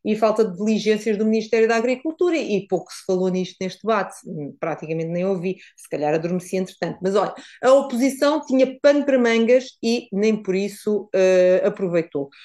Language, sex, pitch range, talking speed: Portuguese, female, 190-240 Hz, 175 wpm